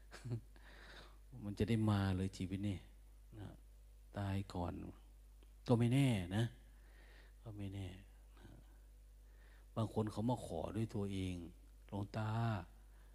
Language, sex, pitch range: Thai, male, 90-115 Hz